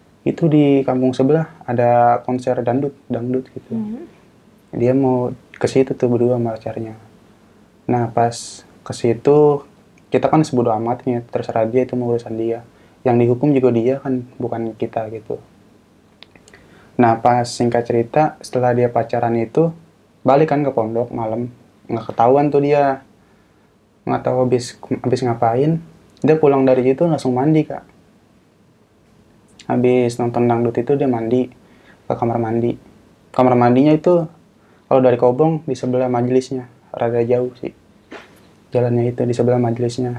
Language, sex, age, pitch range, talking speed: Indonesian, male, 20-39, 120-130 Hz, 135 wpm